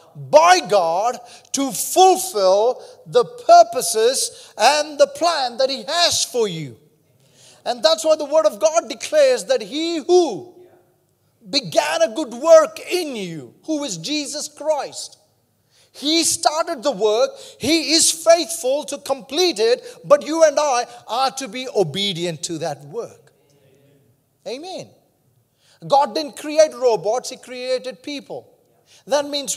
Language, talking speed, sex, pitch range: English, 135 wpm, male, 235-320 Hz